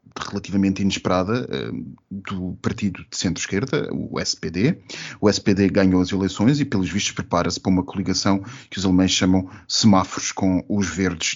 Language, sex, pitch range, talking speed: Portuguese, male, 95-120 Hz, 150 wpm